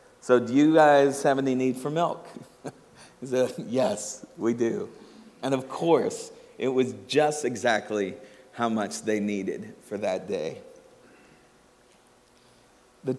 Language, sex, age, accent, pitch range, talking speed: English, male, 40-59, American, 110-130 Hz, 130 wpm